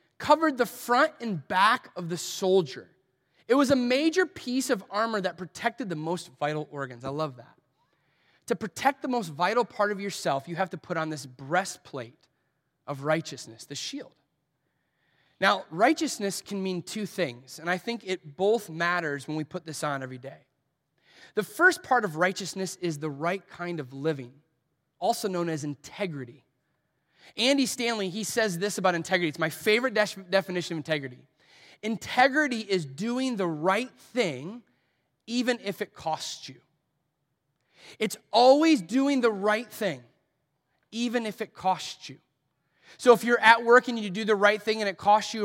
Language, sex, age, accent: English, male, 30-49, American